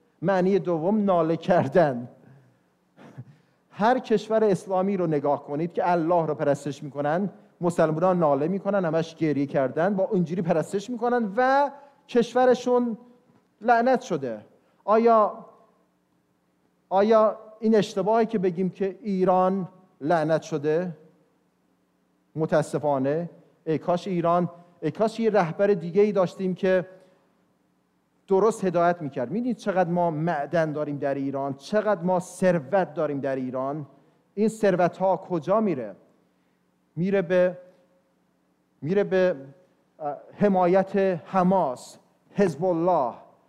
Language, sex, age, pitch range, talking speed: English, male, 40-59, 155-200 Hz, 115 wpm